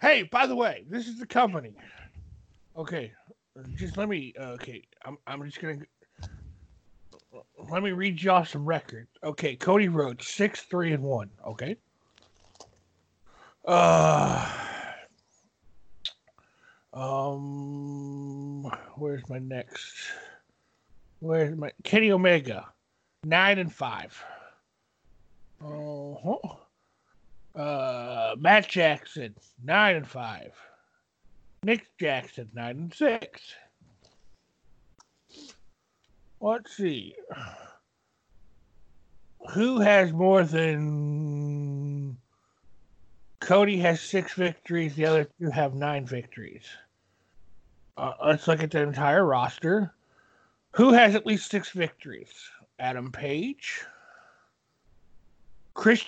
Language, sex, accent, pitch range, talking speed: English, male, American, 135-195 Hz, 95 wpm